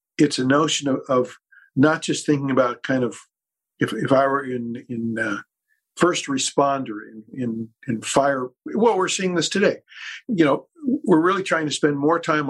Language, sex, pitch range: English, male, 125-150 Hz